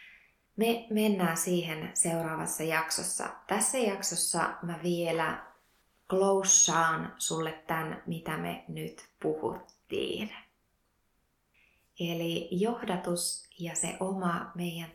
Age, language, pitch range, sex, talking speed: 20-39, Finnish, 160-185 Hz, female, 90 wpm